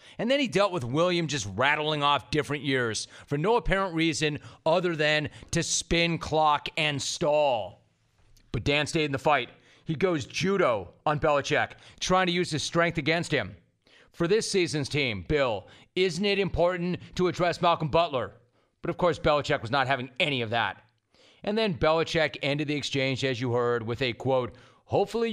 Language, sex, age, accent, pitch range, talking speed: English, male, 30-49, American, 130-175 Hz, 180 wpm